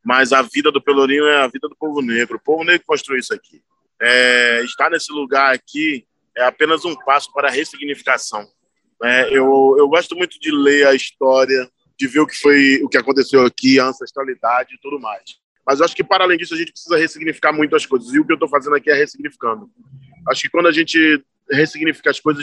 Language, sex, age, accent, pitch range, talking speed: Portuguese, male, 20-39, Brazilian, 135-175 Hz, 220 wpm